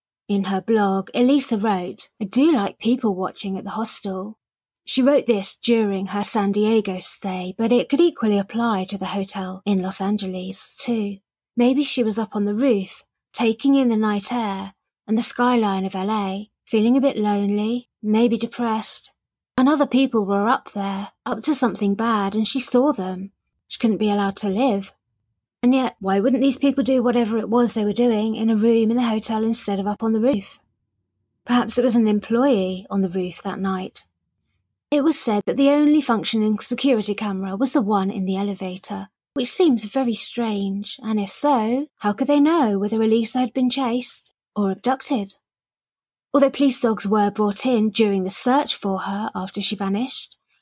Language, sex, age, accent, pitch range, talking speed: English, female, 30-49, British, 200-245 Hz, 185 wpm